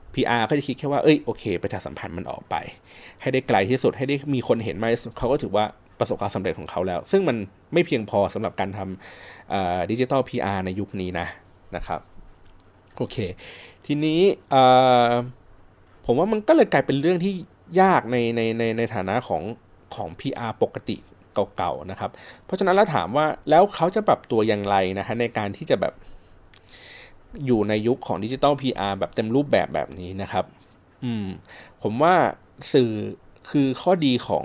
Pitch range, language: 100-140 Hz, Thai